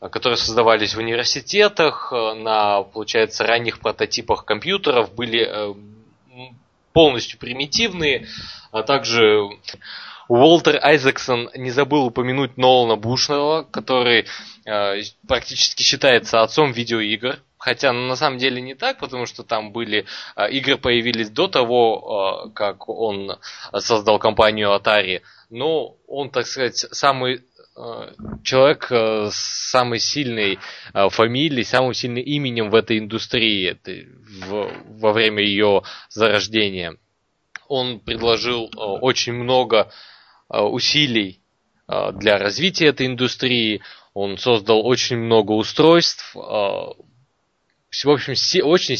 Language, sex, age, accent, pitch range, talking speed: Russian, male, 20-39, native, 110-130 Hz, 100 wpm